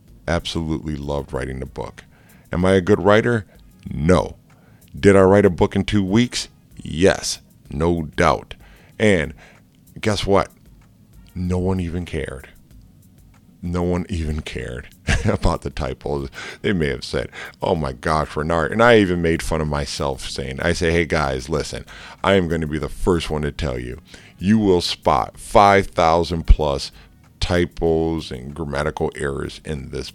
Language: English